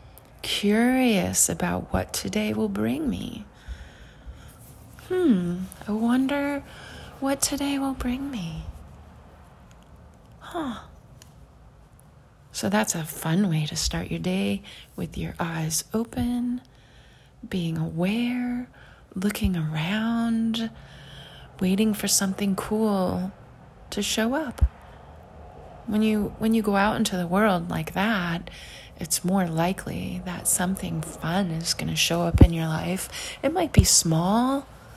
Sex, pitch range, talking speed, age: female, 175-230 Hz, 120 wpm, 30-49